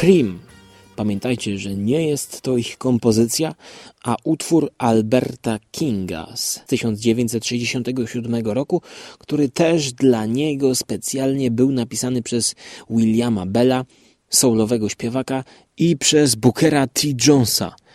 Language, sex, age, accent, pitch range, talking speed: Polish, male, 30-49, native, 120-170 Hz, 105 wpm